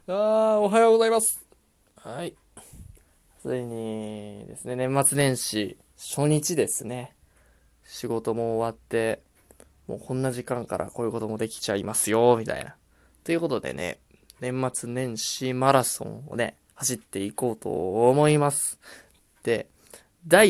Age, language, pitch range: 20-39, Japanese, 110-145 Hz